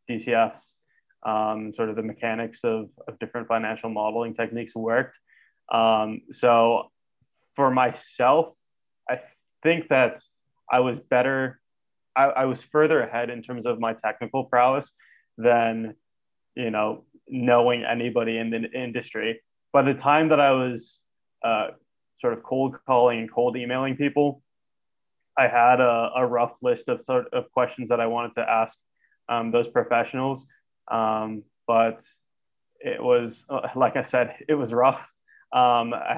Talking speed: 145 wpm